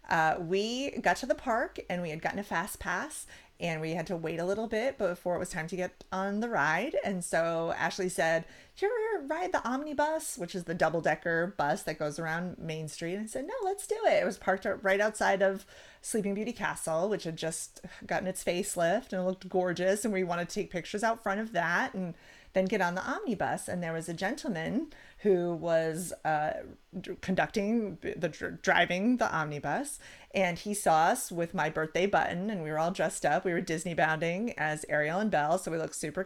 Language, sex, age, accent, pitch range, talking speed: English, female, 30-49, American, 175-235 Hz, 215 wpm